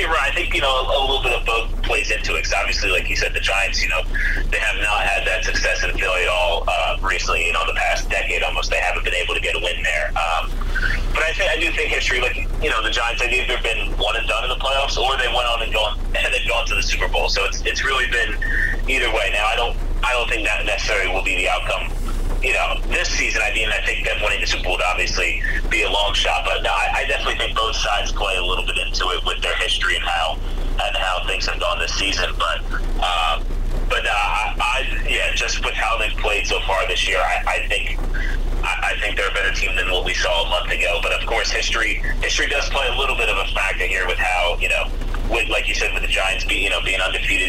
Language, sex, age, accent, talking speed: English, male, 30-49, American, 270 wpm